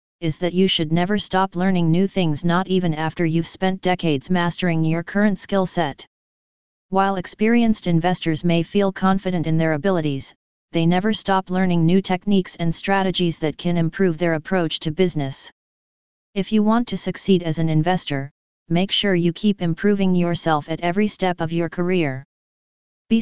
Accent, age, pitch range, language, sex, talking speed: American, 40-59, 165-190 Hz, English, female, 170 wpm